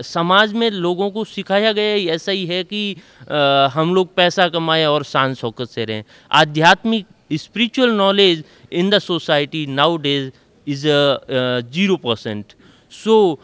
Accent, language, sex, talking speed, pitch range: native, Hindi, male, 140 wpm, 145-200 Hz